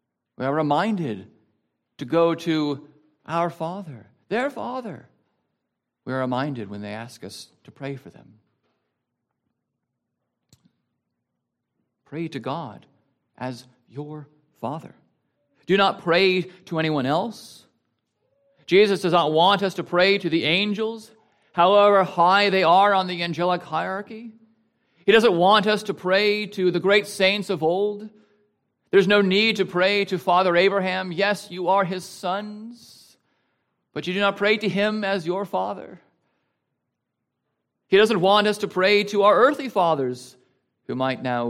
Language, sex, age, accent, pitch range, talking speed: English, male, 50-69, American, 135-200 Hz, 145 wpm